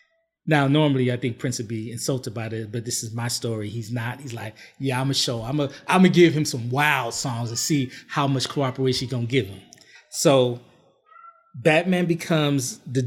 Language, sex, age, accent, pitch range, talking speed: English, male, 30-49, American, 125-165 Hz, 225 wpm